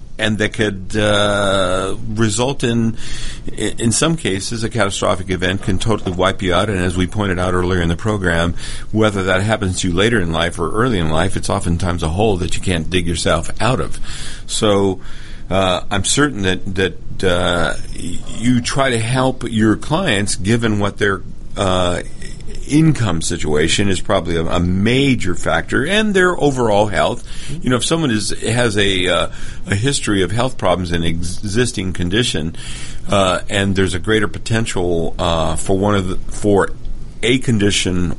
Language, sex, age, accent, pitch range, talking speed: English, male, 50-69, American, 90-115 Hz, 170 wpm